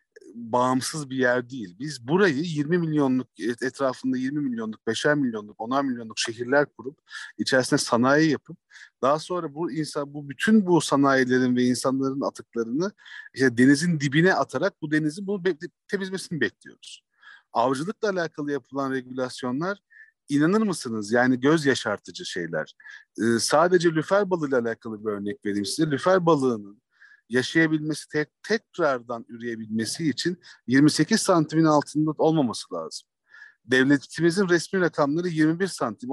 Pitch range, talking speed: 130-180 Hz, 130 wpm